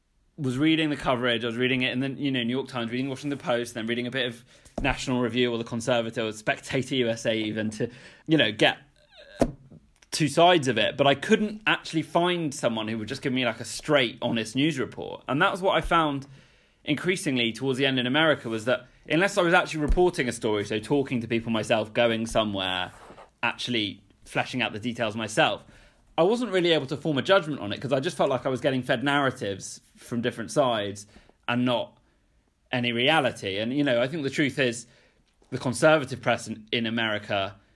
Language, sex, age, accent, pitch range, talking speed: English, male, 20-39, British, 110-135 Hz, 210 wpm